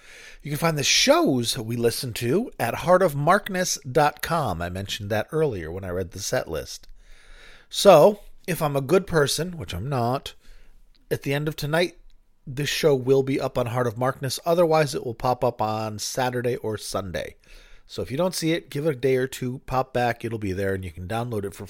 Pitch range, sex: 120-155 Hz, male